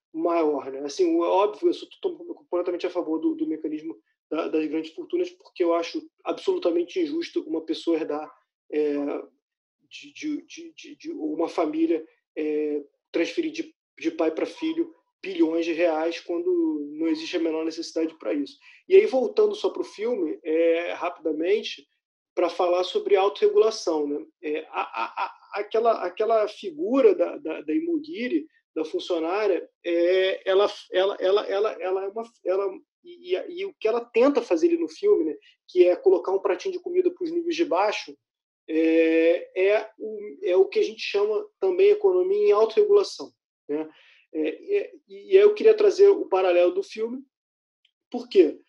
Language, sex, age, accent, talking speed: Portuguese, male, 20-39, Brazilian, 165 wpm